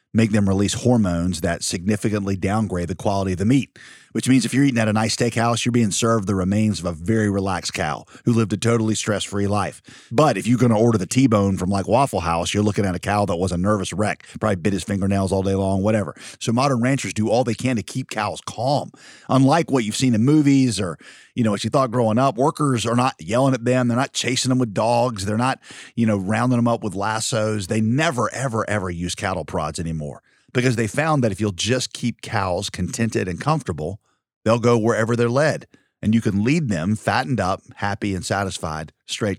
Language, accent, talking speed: English, American, 225 wpm